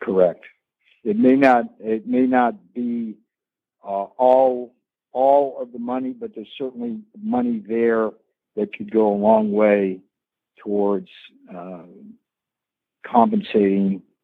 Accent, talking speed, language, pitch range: American, 120 wpm, English, 100-130 Hz